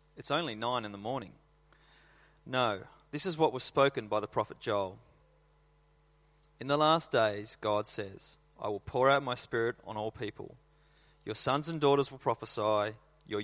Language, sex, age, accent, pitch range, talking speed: English, male, 30-49, Australian, 110-135 Hz, 170 wpm